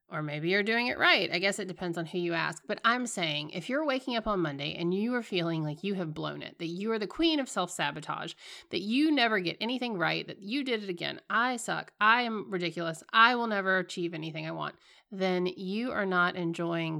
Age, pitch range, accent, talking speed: 30-49, 165-220 Hz, American, 235 wpm